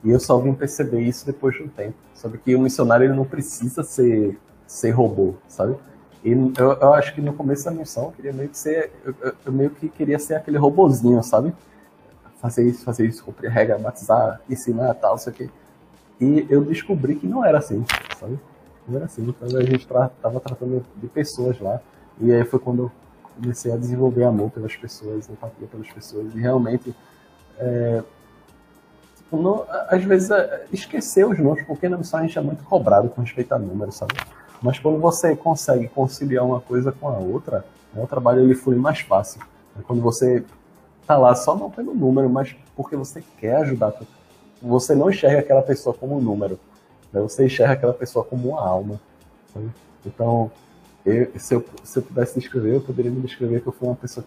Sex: male